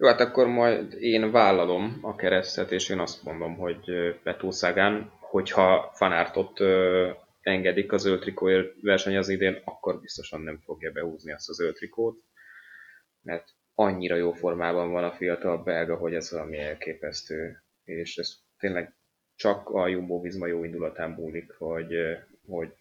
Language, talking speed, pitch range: Hungarian, 140 wpm, 85-105 Hz